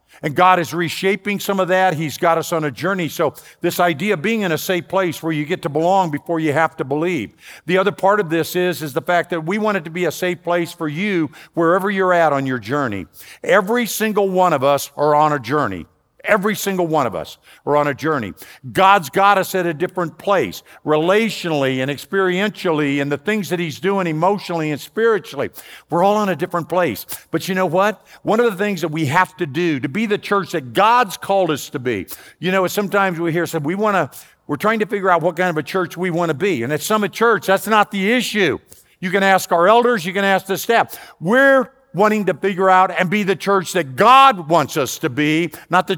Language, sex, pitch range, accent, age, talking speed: English, male, 160-205 Hz, American, 50-69, 240 wpm